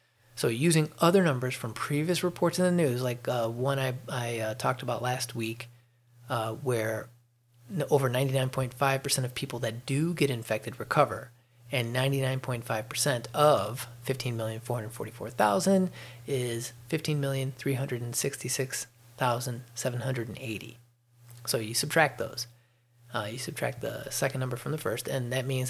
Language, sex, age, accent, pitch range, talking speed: English, male, 30-49, American, 120-145 Hz, 125 wpm